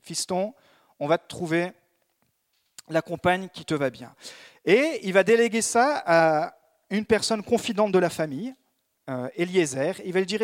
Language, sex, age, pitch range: French, male, 40-59, 160-225 Hz